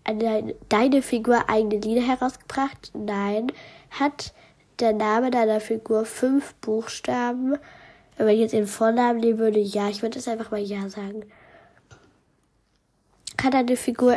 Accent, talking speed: German, 135 wpm